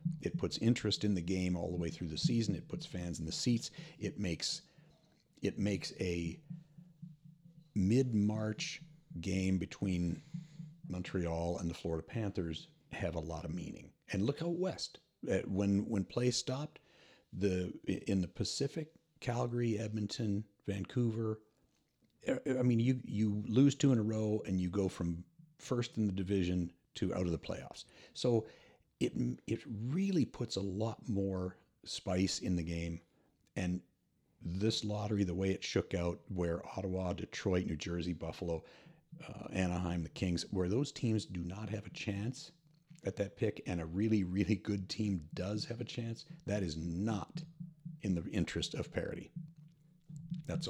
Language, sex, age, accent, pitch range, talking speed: English, male, 50-69, American, 90-130 Hz, 155 wpm